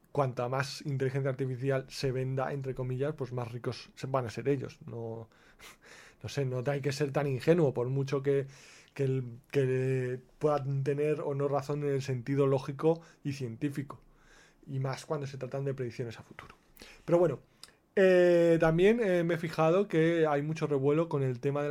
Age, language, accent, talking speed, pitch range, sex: 20-39, Spanish, Spanish, 180 wpm, 130-150 Hz, male